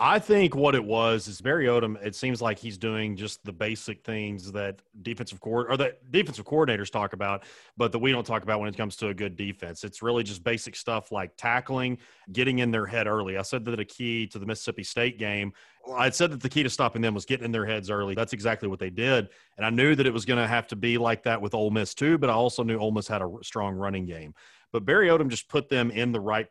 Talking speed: 265 wpm